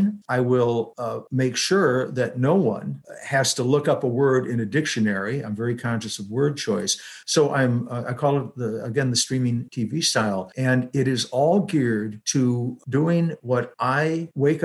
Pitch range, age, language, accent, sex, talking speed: 115-140 Hz, 60-79, English, American, male, 190 wpm